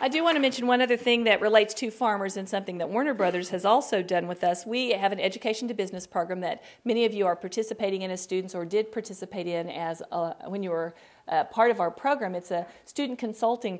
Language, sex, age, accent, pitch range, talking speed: English, female, 40-59, American, 180-220 Hz, 245 wpm